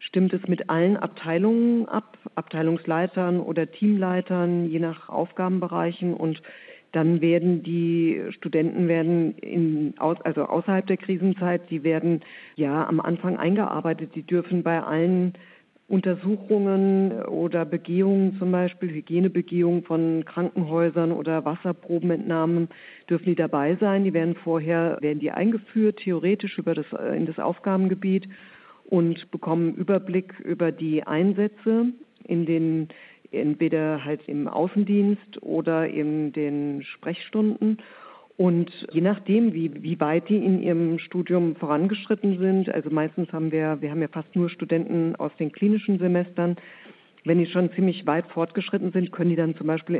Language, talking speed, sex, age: German, 135 wpm, female, 50-69